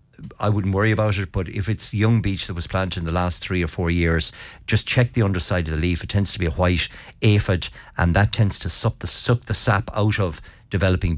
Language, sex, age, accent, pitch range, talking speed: English, male, 60-79, Irish, 85-105 Hz, 245 wpm